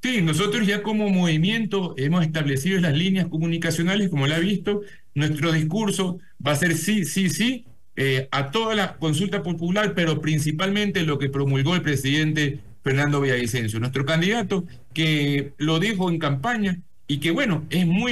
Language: Spanish